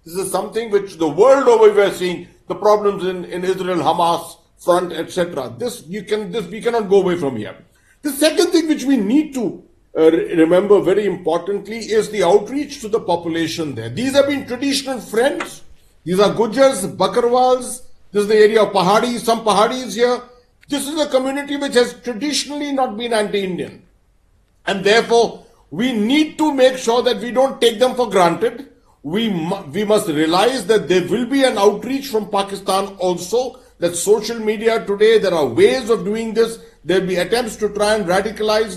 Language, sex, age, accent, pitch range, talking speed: English, male, 50-69, Indian, 190-250 Hz, 185 wpm